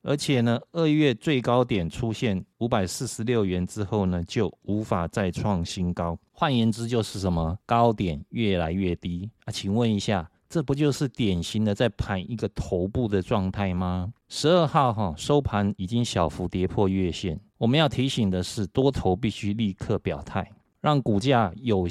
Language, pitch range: Chinese, 95-120 Hz